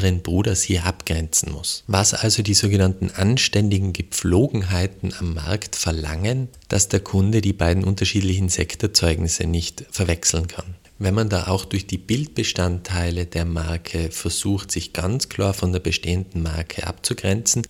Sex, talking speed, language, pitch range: male, 140 wpm, German, 85-105 Hz